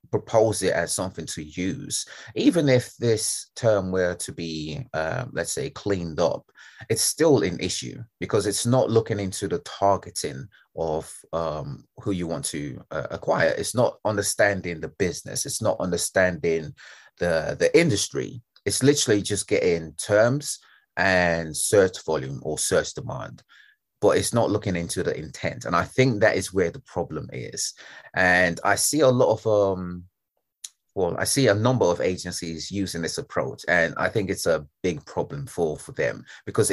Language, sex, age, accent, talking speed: English, male, 30-49, British, 165 wpm